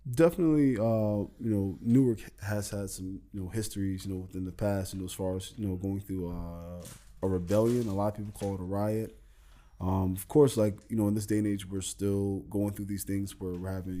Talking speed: 235 wpm